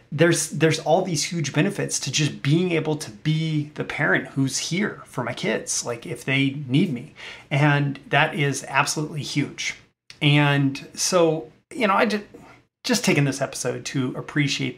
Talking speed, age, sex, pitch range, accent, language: 165 wpm, 30-49, male, 130-160 Hz, American, English